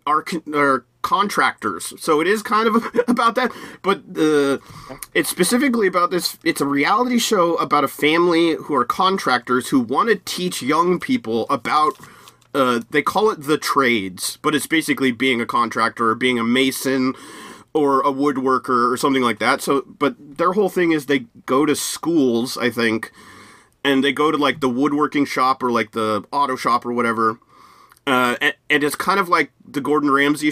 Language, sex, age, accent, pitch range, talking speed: English, male, 30-49, American, 130-180 Hz, 185 wpm